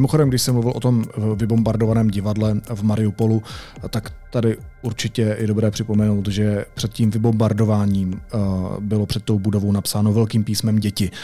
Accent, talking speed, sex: native, 150 wpm, male